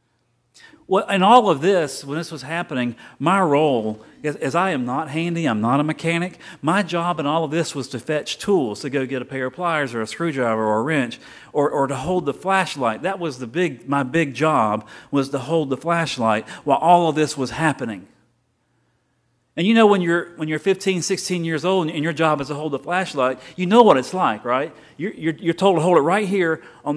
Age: 40-59